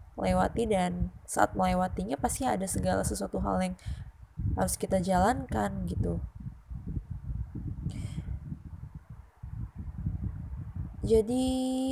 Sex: female